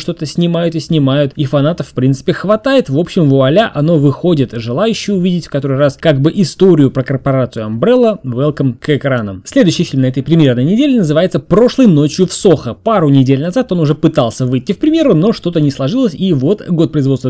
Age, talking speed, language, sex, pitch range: 20-39, 195 wpm, Russian, male, 135-195 Hz